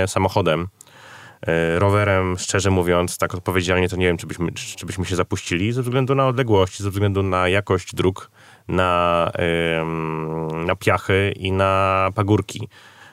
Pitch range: 85-100 Hz